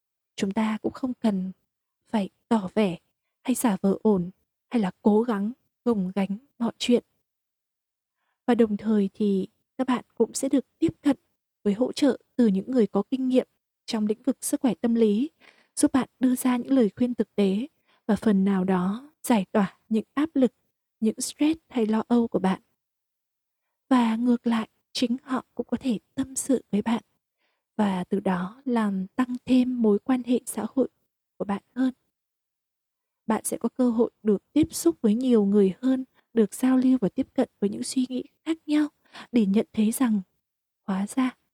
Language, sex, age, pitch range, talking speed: Vietnamese, female, 20-39, 210-255 Hz, 185 wpm